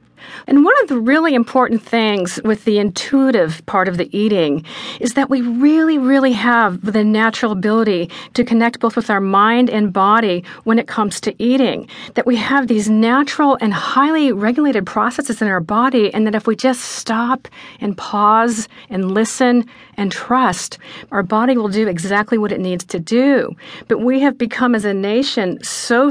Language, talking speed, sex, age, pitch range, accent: English, 180 wpm, female, 50-69, 200-250 Hz, American